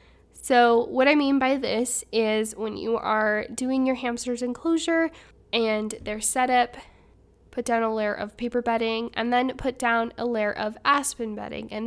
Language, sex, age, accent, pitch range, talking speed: English, female, 10-29, American, 220-255 Hz, 170 wpm